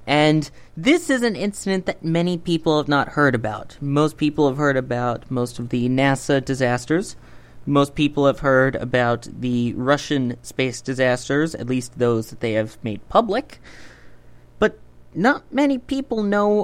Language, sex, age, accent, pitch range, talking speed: English, male, 30-49, American, 125-185 Hz, 160 wpm